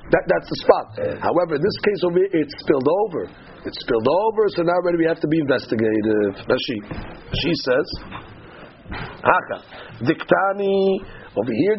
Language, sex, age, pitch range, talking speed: English, male, 50-69, 155-195 Hz, 160 wpm